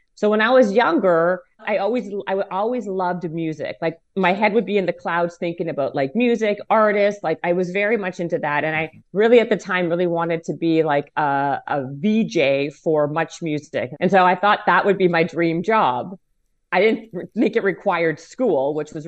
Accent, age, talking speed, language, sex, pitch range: American, 40-59, 210 wpm, English, female, 155-195 Hz